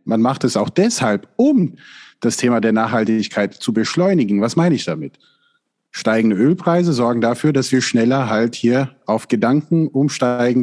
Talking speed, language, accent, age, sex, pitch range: 160 wpm, German, German, 30-49, male, 115-145 Hz